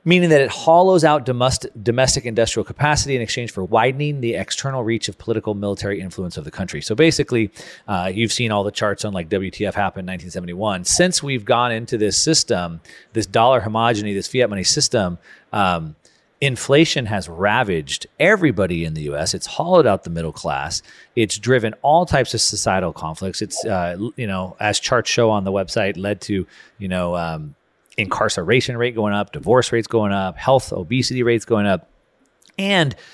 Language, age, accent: English, 30-49, American